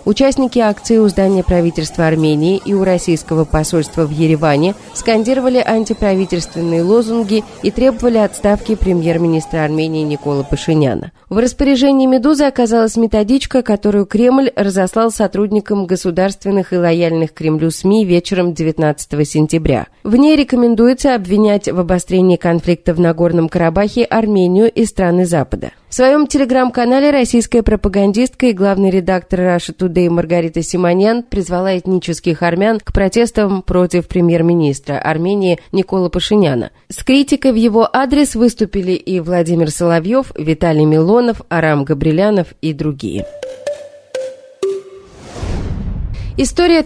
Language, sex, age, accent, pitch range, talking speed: Russian, female, 30-49, native, 170-230 Hz, 120 wpm